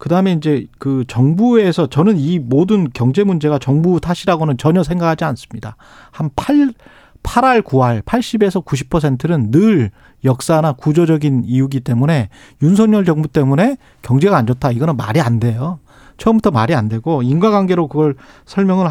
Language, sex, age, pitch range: Korean, male, 40-59, 135-190 Hz